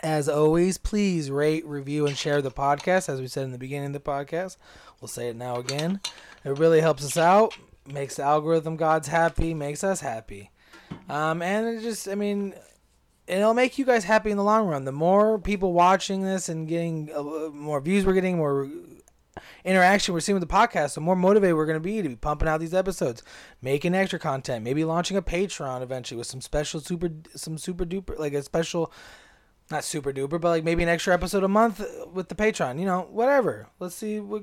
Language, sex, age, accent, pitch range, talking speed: English, male, 20-39, American, 140-185 Hz, 205 wpm